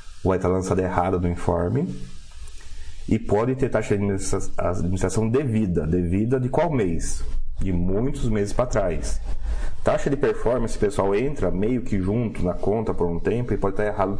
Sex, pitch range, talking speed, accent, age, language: male, 85-110 Hz, 165 wpm, Brazilian, 30-49, Portuguese